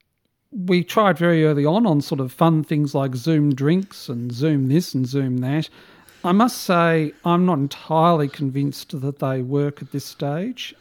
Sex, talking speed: male, 180 wpm